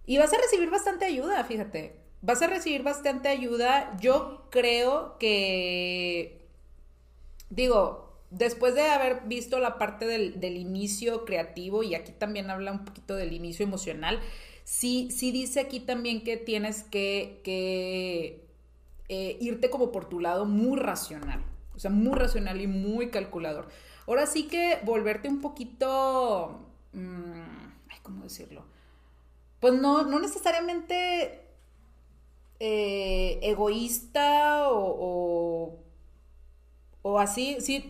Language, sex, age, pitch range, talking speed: Spanish, female, 30-49, 180-260 Hz, 125 wpm